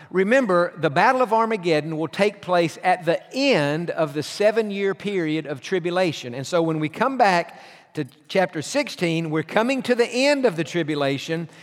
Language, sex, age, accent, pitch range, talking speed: English, male, 50-69, American, 160-205 Hz, 175 wpm